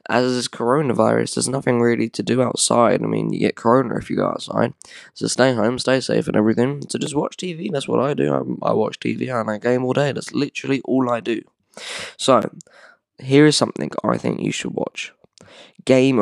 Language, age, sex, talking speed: English, 10-29, male, 210 wpm